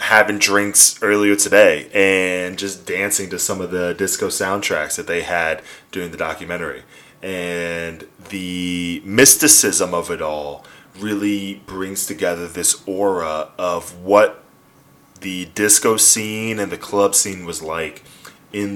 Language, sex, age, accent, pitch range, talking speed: English, male, 10-29, American, 80-100 Hz, 135 wpm